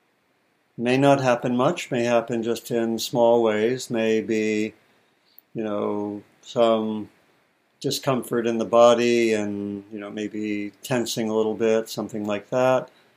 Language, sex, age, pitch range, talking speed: English, male, 60-79, 110-130 Hz, 130 wpm